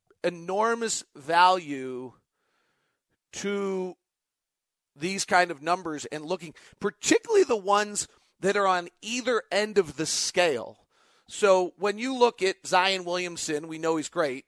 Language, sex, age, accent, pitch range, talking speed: English, male, 40-59, American, 165-205 Hz, 130 wpm